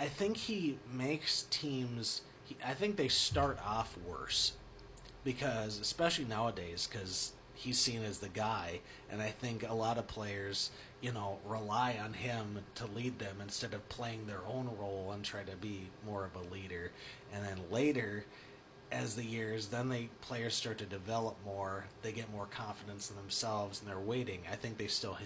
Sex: male